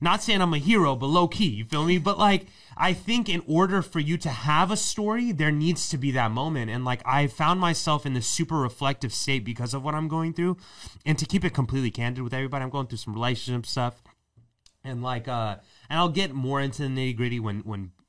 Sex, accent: male, American